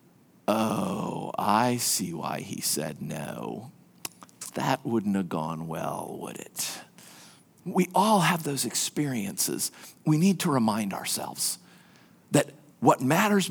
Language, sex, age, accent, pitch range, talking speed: English, male, 50-69, American, 140-210 Hz, 120 wpm